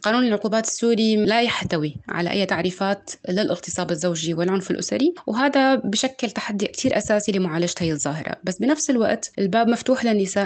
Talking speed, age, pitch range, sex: 150 wpm, 20-39, 175-215 Hz, female